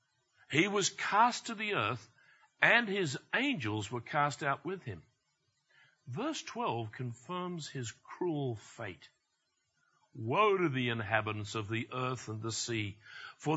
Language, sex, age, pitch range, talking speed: English, male, 60-79, 115-165 Hz, 135 wpm